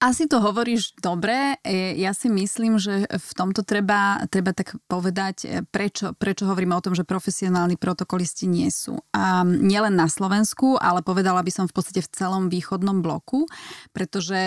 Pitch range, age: 175-200 Hz, 20-39